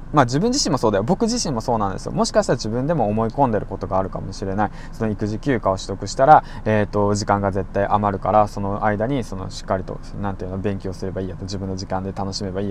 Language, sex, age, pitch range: Japanese, male, 20-39, 100-165 Hz